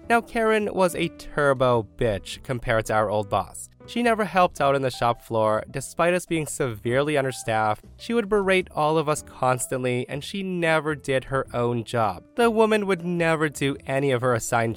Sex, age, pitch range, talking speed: male, 20-39, 115-165 Hz, 190 wpm